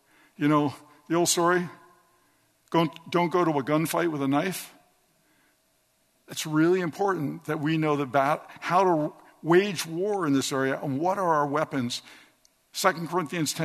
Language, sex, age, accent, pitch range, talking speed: English, male, 50-69, American, 140-165 Hz, 160 wpm